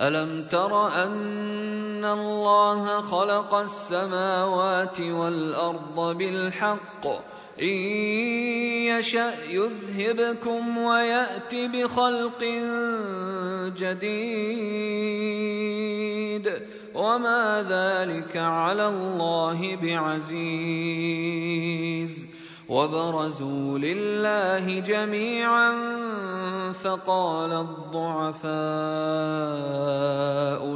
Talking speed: 45 wpm